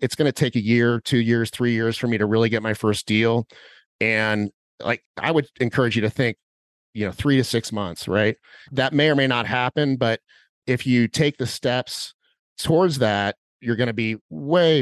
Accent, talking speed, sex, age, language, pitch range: American, 210 wpm, male, 30-49, English, 110-130 Hz